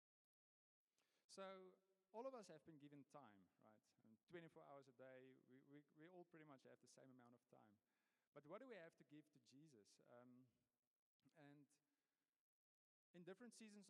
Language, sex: English, male